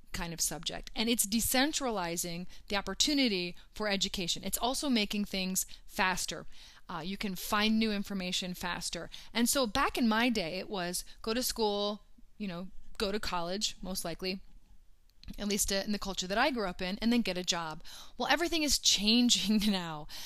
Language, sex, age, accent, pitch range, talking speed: English, female, 30-49, American, 195-250 Hz, 180 wpm